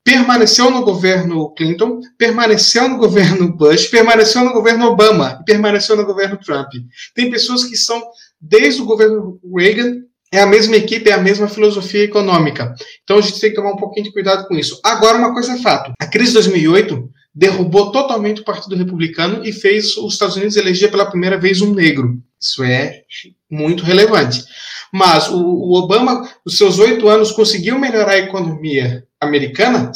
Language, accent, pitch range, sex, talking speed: Portuguese, Brazilian, 175-215 Hz, male, 170 wpm